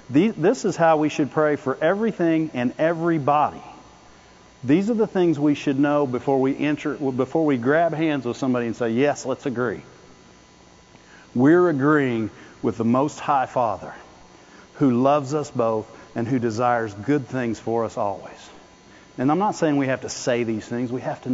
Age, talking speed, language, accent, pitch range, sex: 50-69, 170 wpm, English, American, 125-160 Hz, male